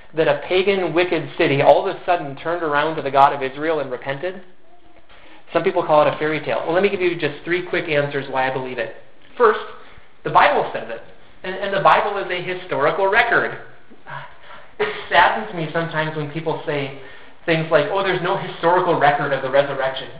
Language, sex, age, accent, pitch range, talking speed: English, male, 30-49, American, 155-195 Hz, 200 wpm